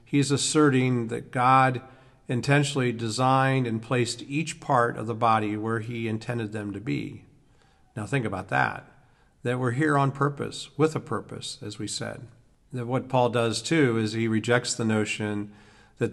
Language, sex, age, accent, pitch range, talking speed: English, male, 50-69, American, 110-130 Hz, 165 wpm